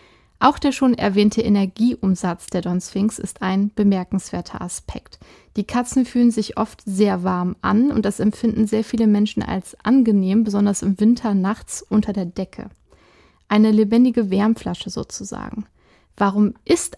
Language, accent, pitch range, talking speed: German, German, 195-230 Hz, 145 wpm